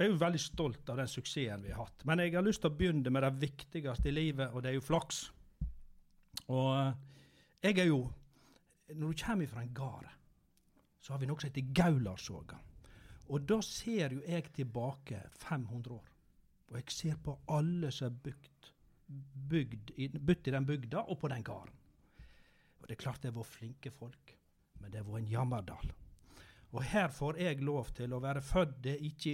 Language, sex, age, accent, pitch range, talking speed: English, male, 60-79, Swedish, 125-155 Hz, 185 wpm